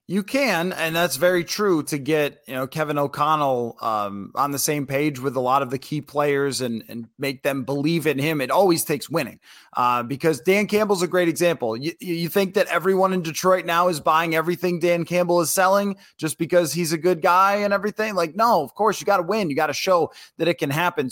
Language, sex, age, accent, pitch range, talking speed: English, male, 30-49, American, 140-175 Hz, 230 wpm